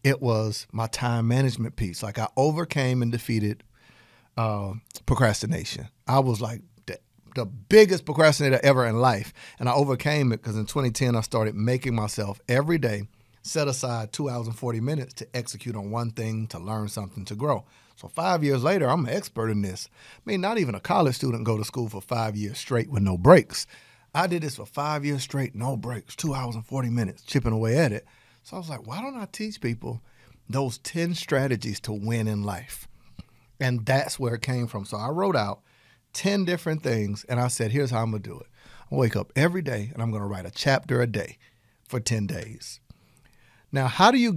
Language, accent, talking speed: English, American, 210 wpm